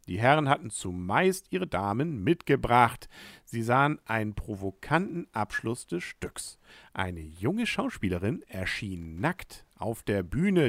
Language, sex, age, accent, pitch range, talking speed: German, male, 50-69, German, 105-155 Hz, 125 wpm